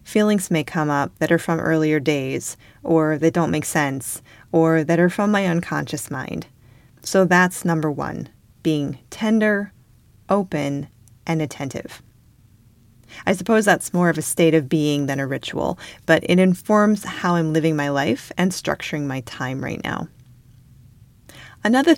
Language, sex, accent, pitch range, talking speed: English, female, American, 135-175 Hz, 155 wpm